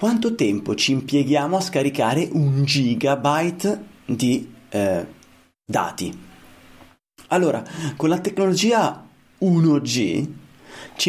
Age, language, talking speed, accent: 30-49, Italian, 90 wpm, native